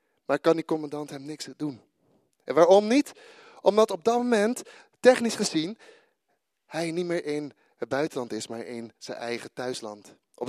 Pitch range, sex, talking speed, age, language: 150-220 Hz, male, 165 wpm, 30-49, Dutch